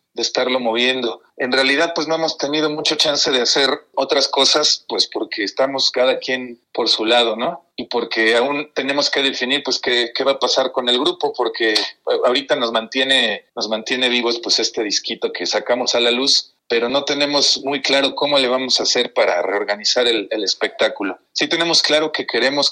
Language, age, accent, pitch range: Spanish, 40-59, Mexican, 115-140 Hz